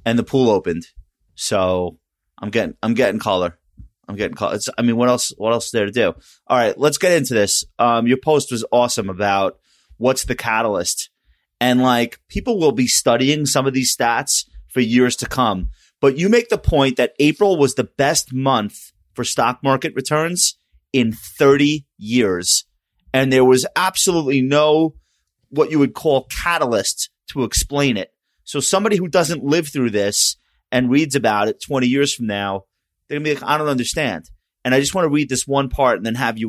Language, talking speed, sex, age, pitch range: English, 195 wpm, male, 30-49, 110-140 Hz